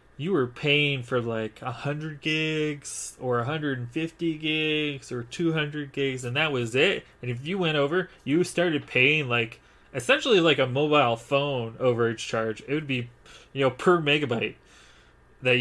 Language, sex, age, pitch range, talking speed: English, male, 20-39, 115-145 Hz, 160 wpm